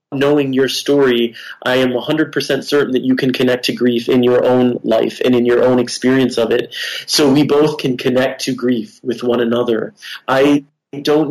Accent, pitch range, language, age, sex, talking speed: American, 120-135 Hz, English, 30-49, male, 190 wpm